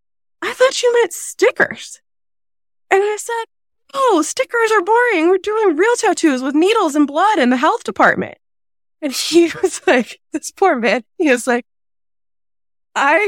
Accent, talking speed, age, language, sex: American, 160 wpm, 20-39, English, female